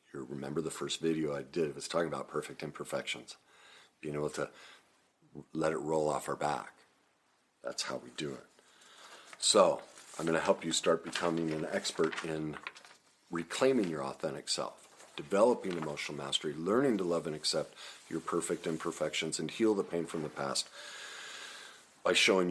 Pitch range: 80-115 Hz